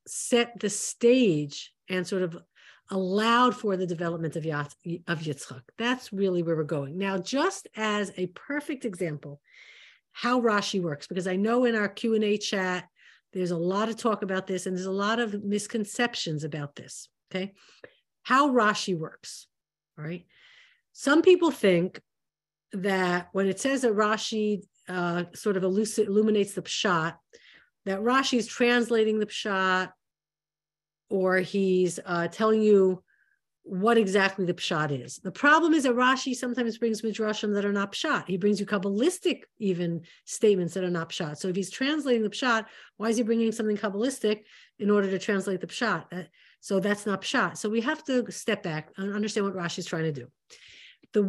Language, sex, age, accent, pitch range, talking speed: English, female, 50-69, American, 180-230 Hz, 170 wpm